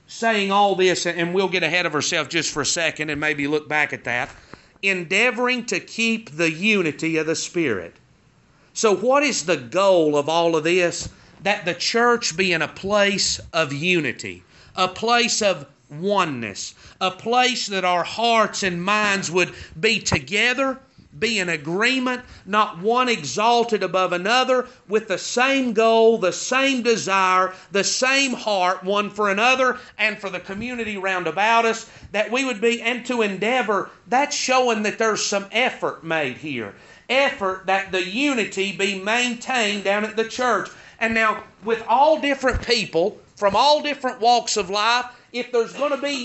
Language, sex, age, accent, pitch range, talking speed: English, male, 40-59, American, 180-235 Hz, 165 wpm